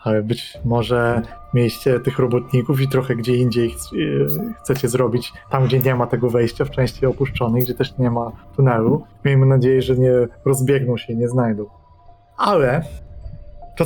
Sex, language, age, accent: male, Polish, 20-39, native